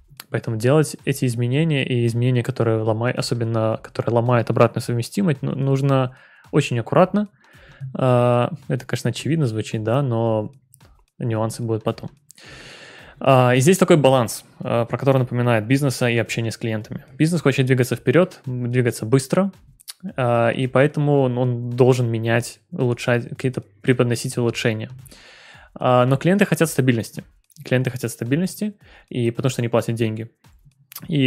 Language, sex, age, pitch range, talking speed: Russian, male, 20-39, 115-135 Hz, 125 wpm